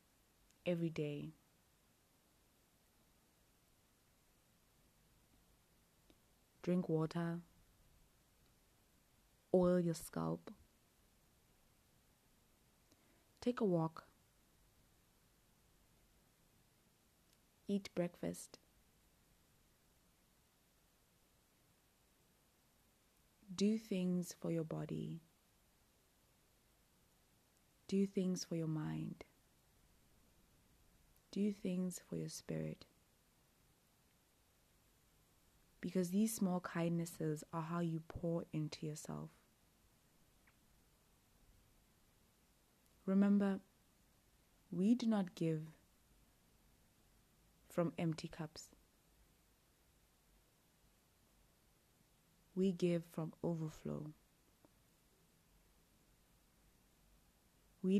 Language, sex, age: English, female, 20-39